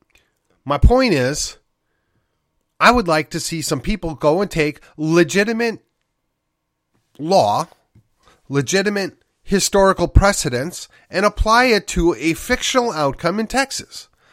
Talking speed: 115 wpm